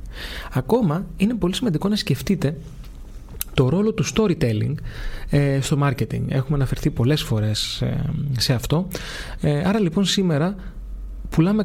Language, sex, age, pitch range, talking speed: Greek, male, 30-49, 125-170 Hz, 115 wpm